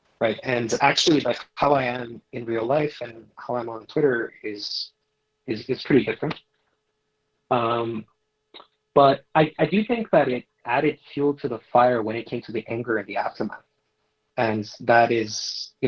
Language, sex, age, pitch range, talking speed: English, male, 30-49, 115-145 Hz, 175 wpm